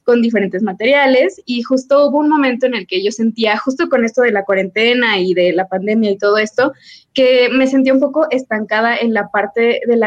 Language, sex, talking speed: Spanish, female, 220 wpm